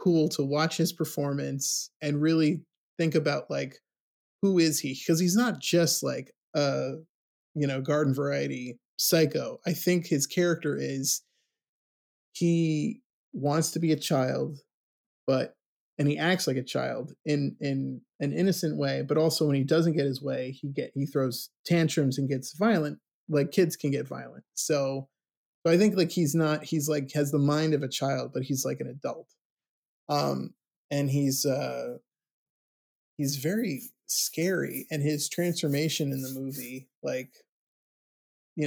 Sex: male